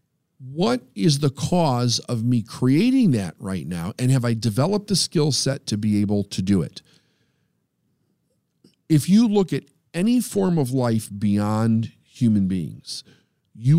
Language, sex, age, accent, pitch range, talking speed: English, male, 50-69, American, 110-150 Hz, 150 wpm